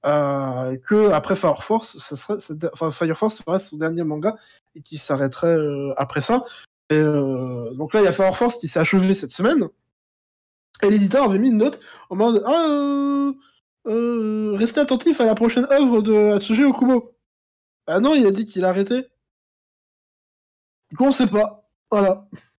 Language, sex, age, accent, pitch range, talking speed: French, male, 20-39, French, 165-215 Hz, 190 wpm